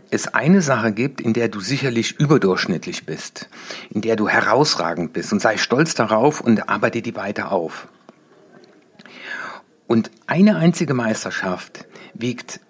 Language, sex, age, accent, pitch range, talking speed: German, male, 60-79, German, 110-145 Hz, 135 wpm